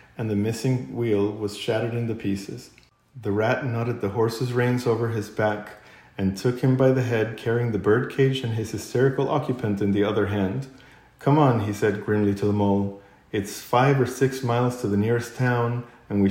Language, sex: English, male